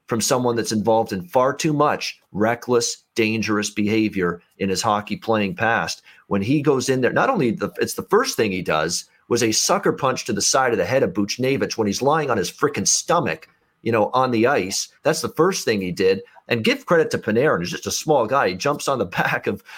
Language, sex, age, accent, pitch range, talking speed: English, male, 40-59, American, 110-145 Hz, 230 wpm